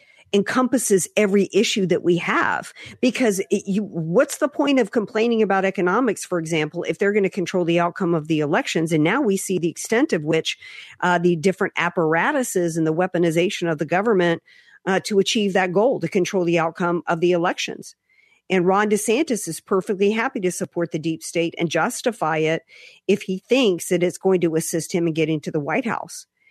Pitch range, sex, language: 170-220 Hz, female, English